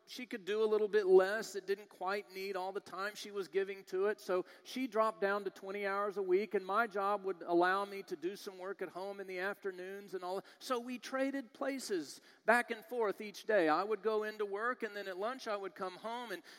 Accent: American